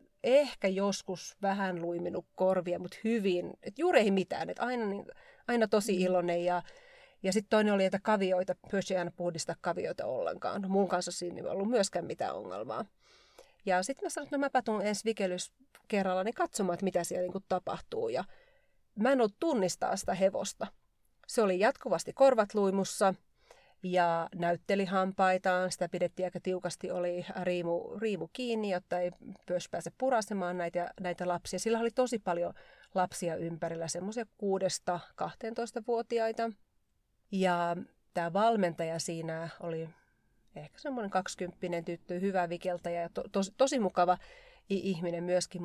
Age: 30-49